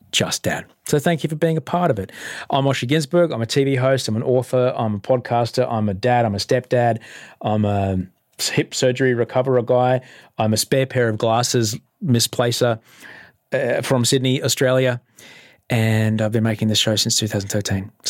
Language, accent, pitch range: English, Australian, 105-145 Hz